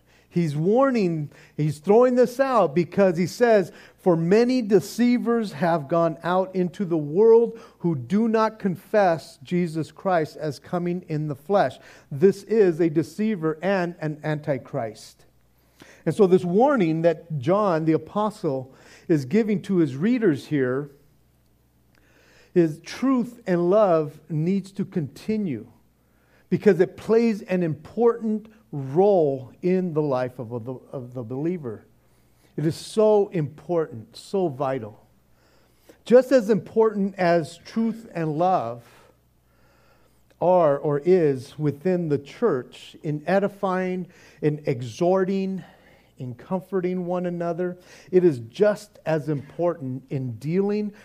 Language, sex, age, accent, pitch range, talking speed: English, male, 50-69, American, 145-195 Hz, 125 wpm